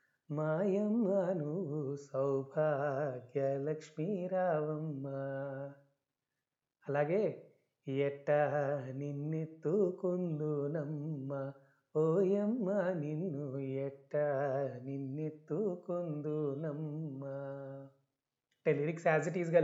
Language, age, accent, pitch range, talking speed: Telugu, 30-49, native, 145-185 Hz, 45 wpm